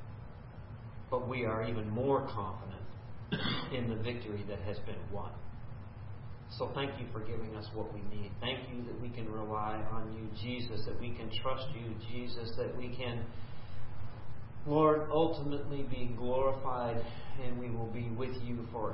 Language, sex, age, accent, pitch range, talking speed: English, male, 40-59, American, 110-120 Hz, 160 wpm